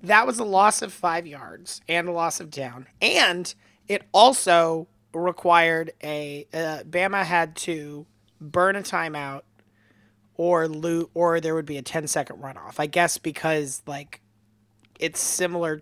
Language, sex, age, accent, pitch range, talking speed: English, male, 30-49, American, 140-180 Hz, 150 wpm